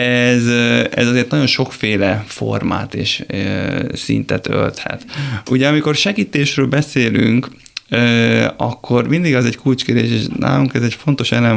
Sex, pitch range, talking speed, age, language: male, 120-140 Hz, 135 wpm, 20-39, Hungarian